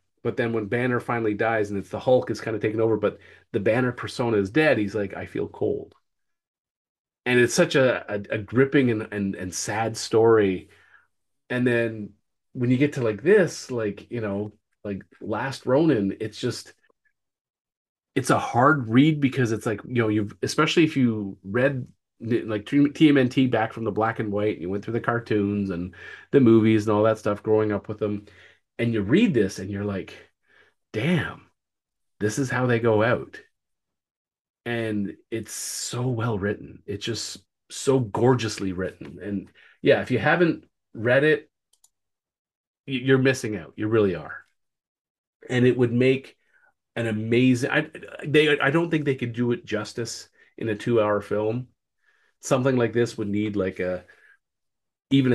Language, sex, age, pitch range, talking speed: English, male, 30-49, 105-130 Hz, 170 wpm